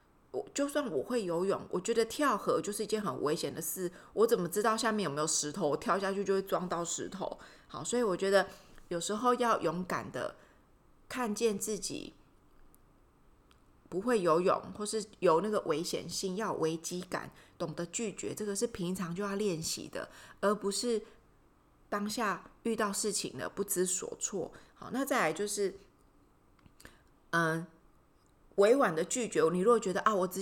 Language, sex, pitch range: Chinese, female, 170-220 Hz